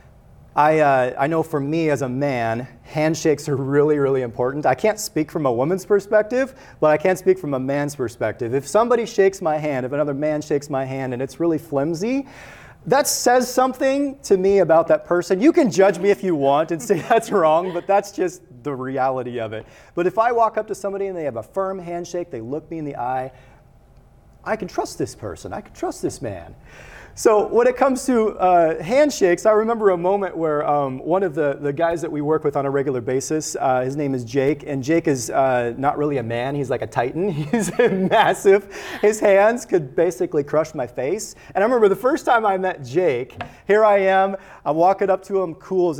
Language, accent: English, American